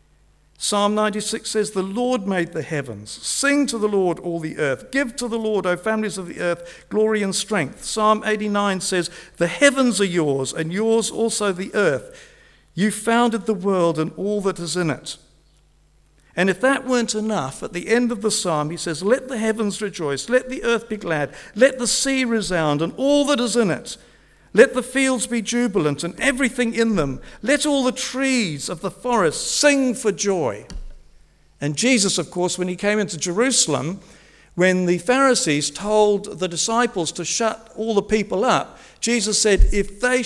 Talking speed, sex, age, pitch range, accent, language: 185 wpm, male, 50-69, 160-235 Hz, British, English